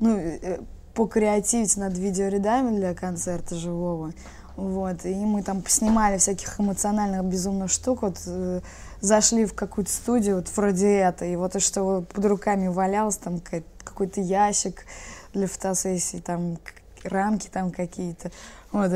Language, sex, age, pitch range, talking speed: Russian, female, 20-39, 175-205 Hz, 130 wpm